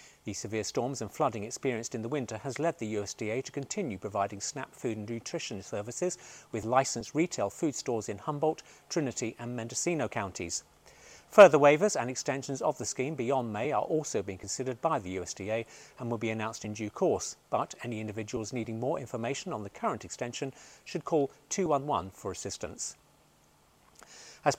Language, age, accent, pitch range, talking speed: English, 40-59, British, 115-155 Hz, 175 wpm